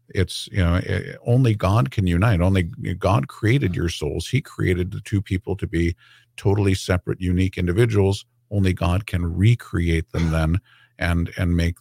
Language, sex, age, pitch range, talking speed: English, male, 50-69, 85-105 Hz, 165 wpm